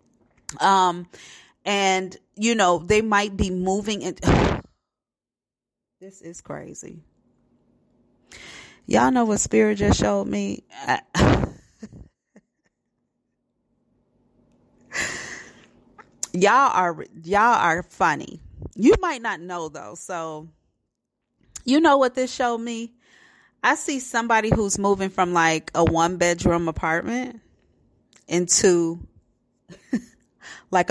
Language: English